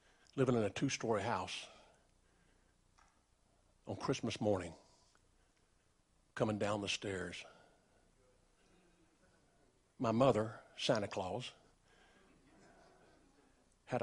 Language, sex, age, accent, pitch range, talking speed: English, male, 50-69, American, 100-115 Hz, 75 wpm